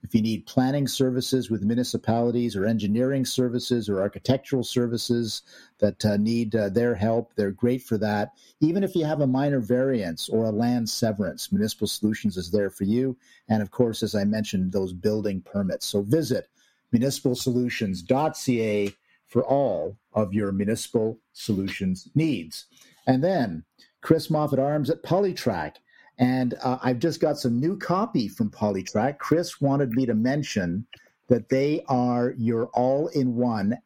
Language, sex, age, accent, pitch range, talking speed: English, male, 50-69, American, 110-130 Hz, 150 wpm